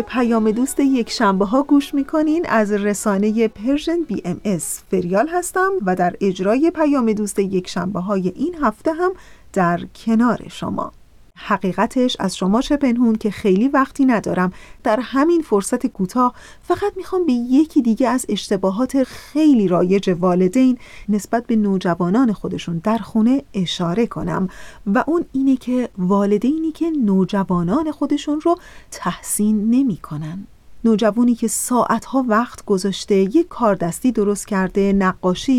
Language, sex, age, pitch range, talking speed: Persian, female, 40-59, 195-265 Hz, 135 wpm